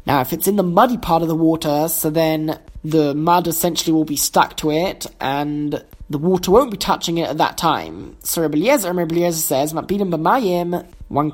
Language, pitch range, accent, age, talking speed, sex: English, 160-200 Hz, British, 20-39, 180 wpm, male